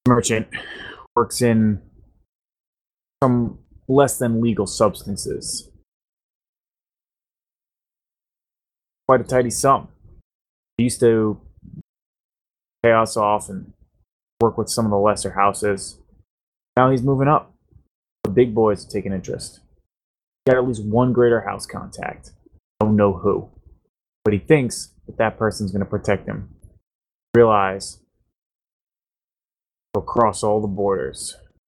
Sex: male